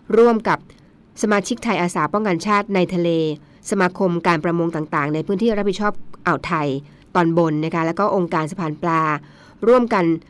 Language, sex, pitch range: Thai, female, 160-205 Hz